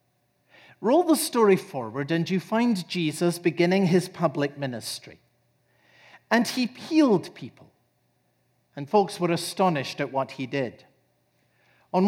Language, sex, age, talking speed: English, male, 50-69, 125 wpm